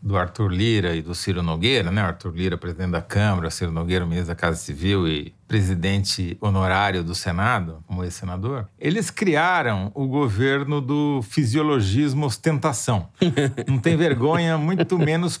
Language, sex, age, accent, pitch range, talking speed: Portuguese, male, 40-59, Brazilian, 105-145 Hz, 150 wpm